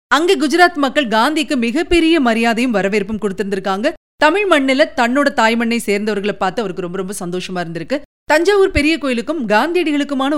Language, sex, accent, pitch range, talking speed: Tamil, female, native, 210-300 Hz, 135 wpm